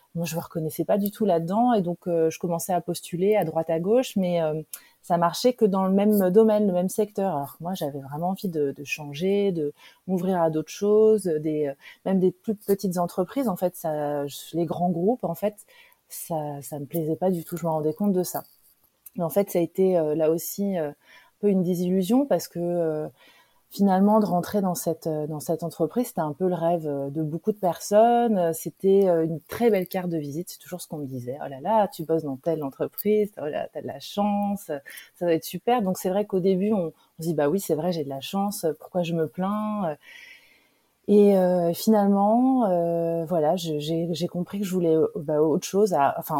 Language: French